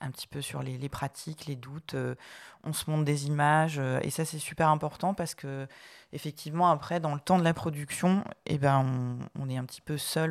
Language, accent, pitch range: French, French, 130-160 Hz